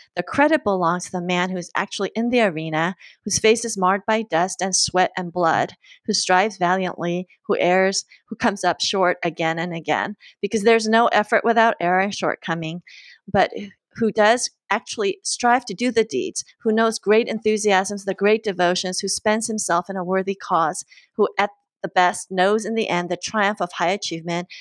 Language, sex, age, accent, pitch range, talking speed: English, female, 30-49, American, 185-225 Hz, 190 wpm